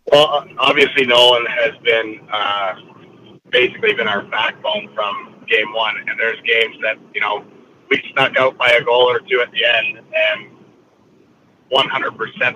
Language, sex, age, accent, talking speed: English, male, 30-49, American, 160 wpm